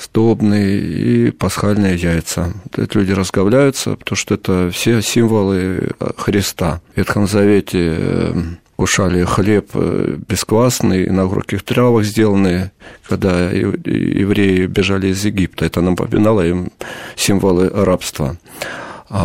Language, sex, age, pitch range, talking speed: Russian, male, 40-59, 90-110 Hz, 105 wpm